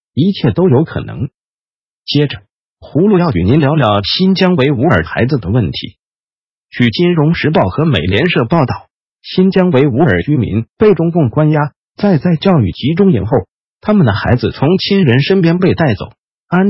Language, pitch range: Chinese, 125-180 Hz